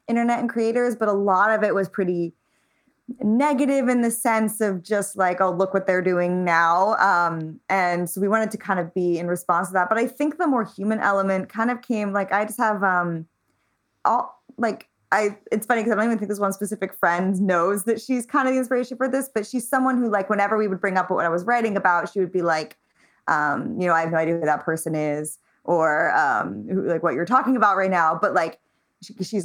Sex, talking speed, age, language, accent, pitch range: female, 235 wpm, 20-39, English, American, 180-220 Hz